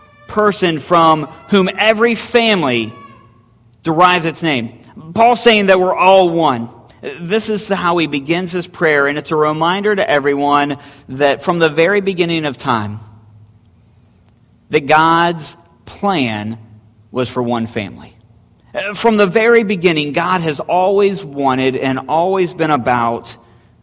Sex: male